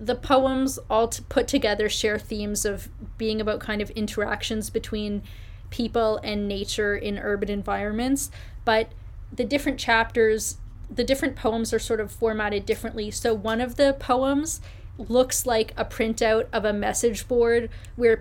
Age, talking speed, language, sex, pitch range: 20-39, 150 wpm, English, female, 210-235 Hz